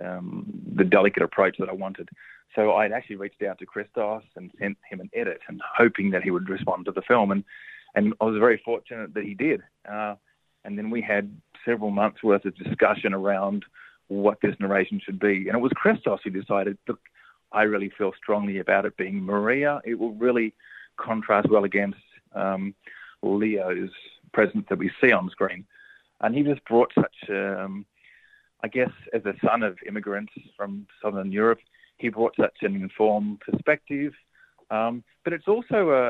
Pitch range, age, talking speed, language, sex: 100-115 Hz, 30-49, 180 wpm, English, male